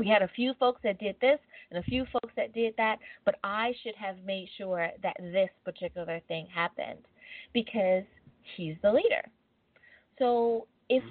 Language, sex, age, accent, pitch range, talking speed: English, female, 20-39, American, 190-230 Hz, 175 wpm